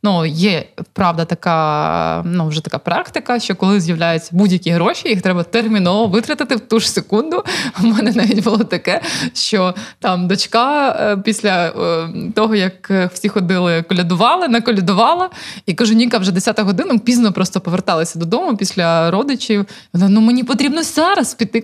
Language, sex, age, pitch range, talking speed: Ukrainian, female, 20-39, 185-245 Hz, 155 wpm